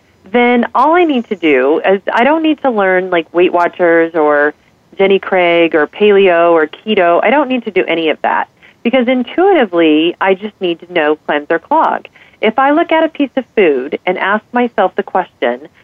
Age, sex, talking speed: 40-59, female, 200 wpm